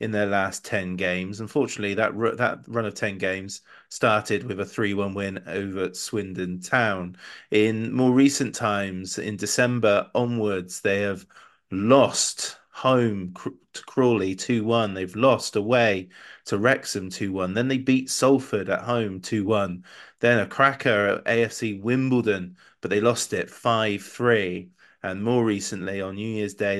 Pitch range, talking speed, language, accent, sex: 100-115 Hz, 150 wpm, English, British, male